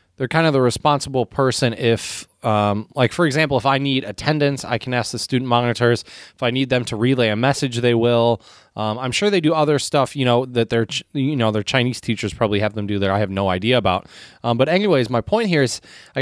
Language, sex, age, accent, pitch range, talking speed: English, male, 20-39, American, 120-160 Hz, 240 wpm